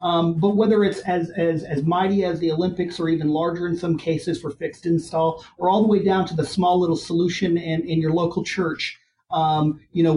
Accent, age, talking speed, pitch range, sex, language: American, 40-59, 225 wpm, 140-170 Hz, male, English